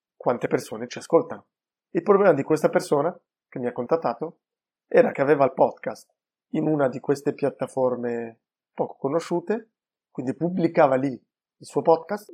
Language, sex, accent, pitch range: Italian, male, native, 130-175 Hz